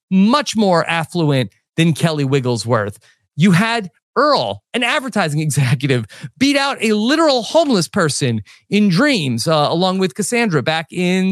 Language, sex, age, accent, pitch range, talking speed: English, male, 30-49, American, 150-220 Hz, 140 wpm